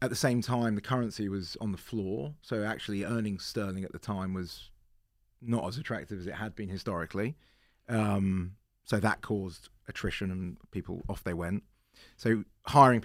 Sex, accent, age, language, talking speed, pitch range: male, British, 30-49, English, 175 wpm, 95-115 Hz